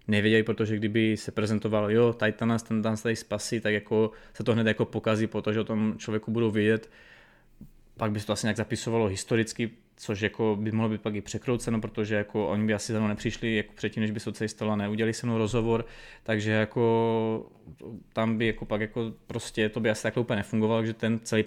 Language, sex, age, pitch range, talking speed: Czech, male, 20-39, 105-115 Hz, 200 wpm